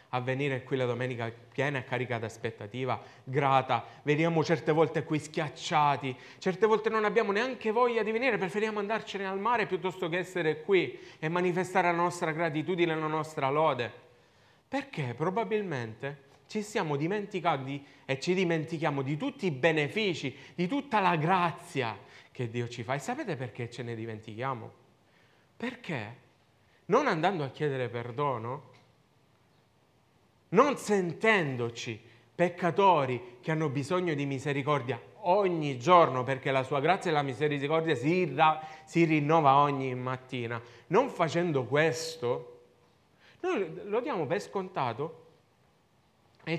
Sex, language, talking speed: male, Italian, 135 wpm